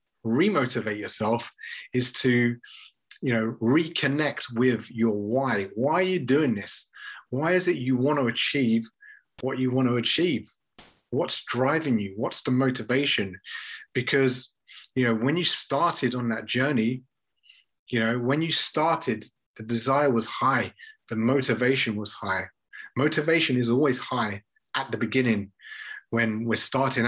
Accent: British